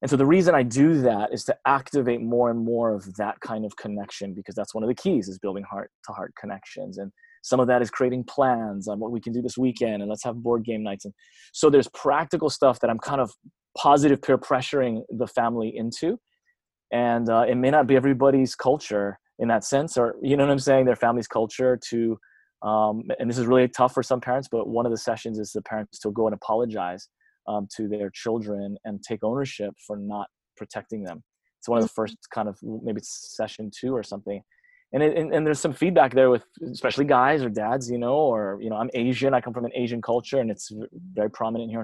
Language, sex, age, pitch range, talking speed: English, male, 20-39, 105-130 Hz, 230 wpm